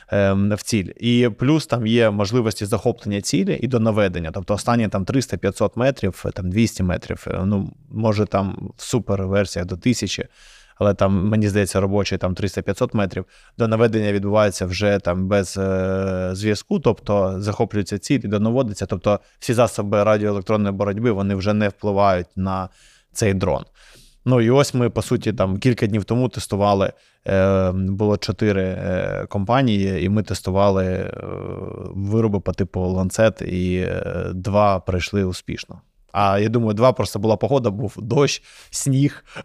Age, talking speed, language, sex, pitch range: 20-39, 145 wpm, Ukrainian, male, 95-115 Hz